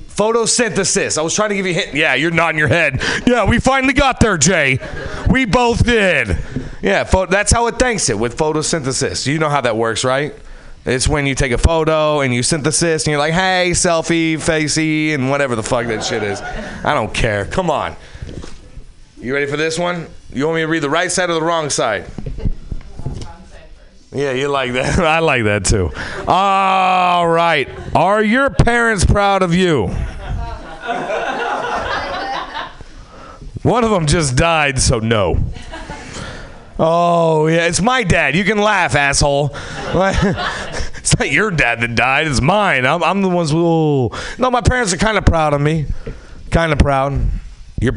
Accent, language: American, English